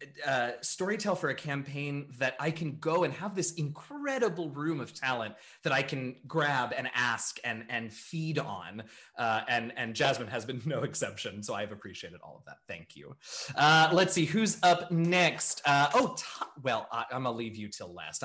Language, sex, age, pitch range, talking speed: English, male, 20-39, 115-165 Hz, 190 wpm